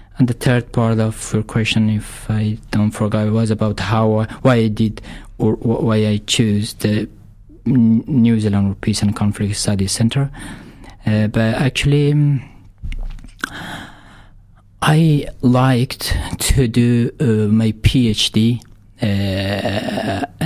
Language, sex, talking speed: English, male, 115 wpm